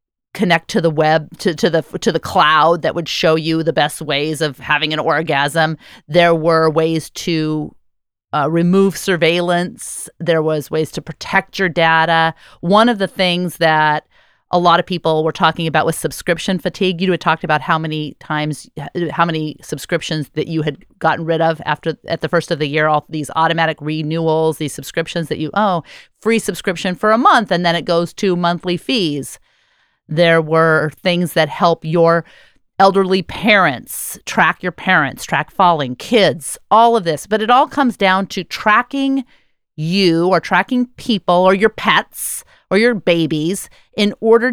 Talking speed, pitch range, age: 175 wpm, 160-190 Hz, 30-49